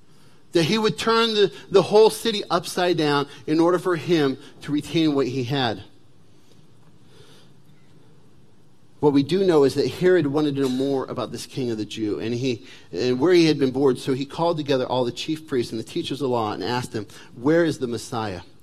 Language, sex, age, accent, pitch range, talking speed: English, male, 40-59, American, 135-185 Hz, 205 wpm